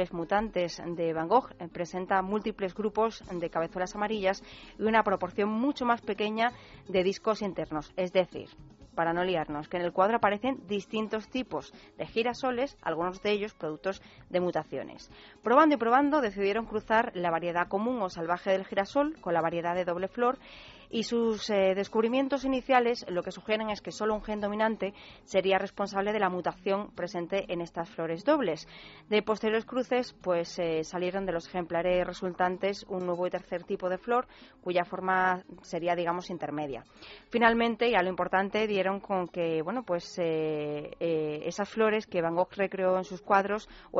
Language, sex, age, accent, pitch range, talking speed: Spanish, female, 30-49, Spanish, 180-220 Hz, 170 wpm